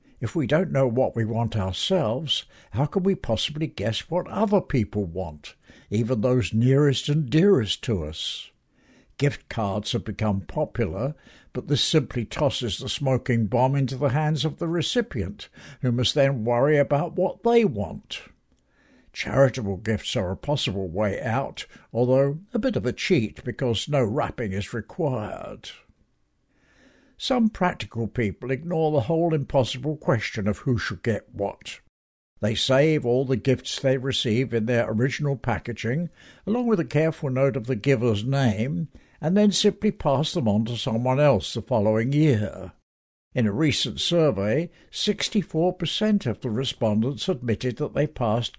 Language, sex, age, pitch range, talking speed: English, male, 60-79, 115-155 Hz, 155 wpm